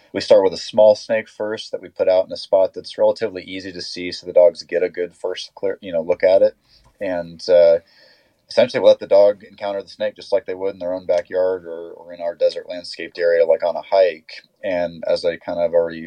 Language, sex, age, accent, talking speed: English, male, 30-49, American, 255 wpm